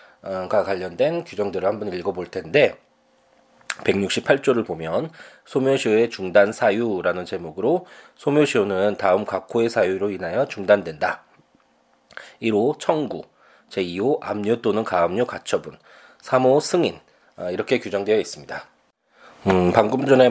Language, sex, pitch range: Korean, male, 90-125 Hz